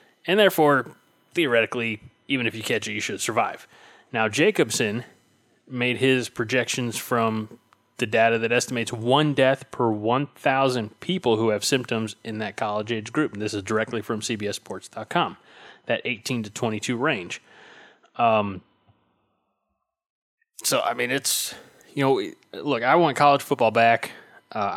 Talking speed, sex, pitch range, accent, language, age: 140 wpm, male, 110-125 Hz, American, English, 20-39